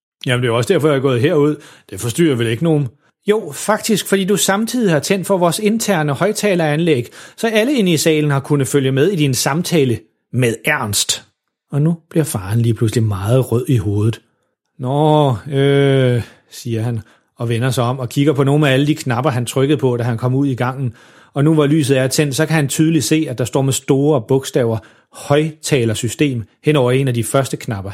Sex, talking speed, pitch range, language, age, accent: male, 215 wpm, 125-160 Hz, Danish, 30-49, native